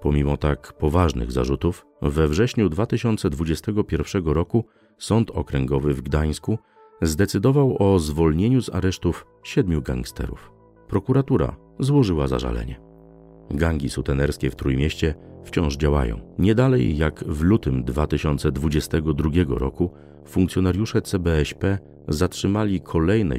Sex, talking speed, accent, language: male, 95 wpm, native, Polish